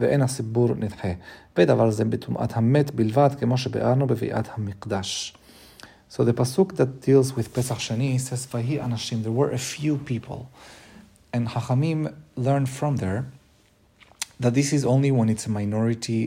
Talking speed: 100 wpm